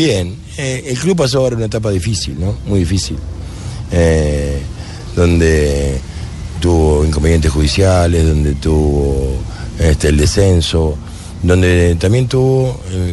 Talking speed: 120 wpm